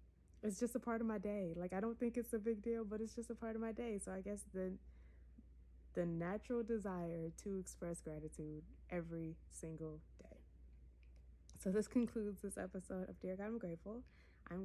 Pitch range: 170-215 Hz